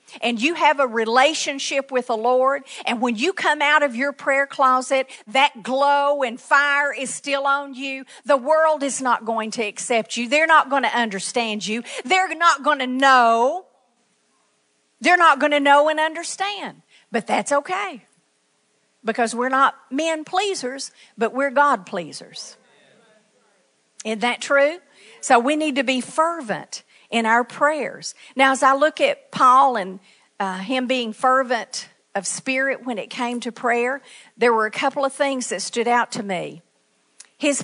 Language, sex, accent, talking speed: English, female, American, 165 wpm